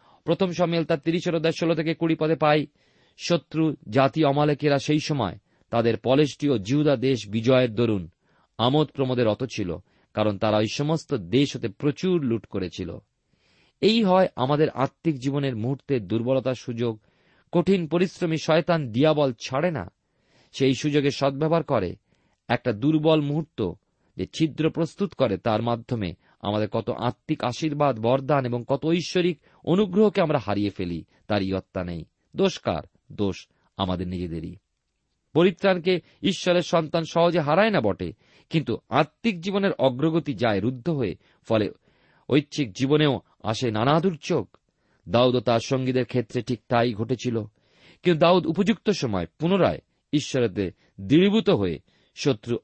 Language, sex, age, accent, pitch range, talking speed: Bengali, male, 40-59, native, 115-165 Hz, 125 wpm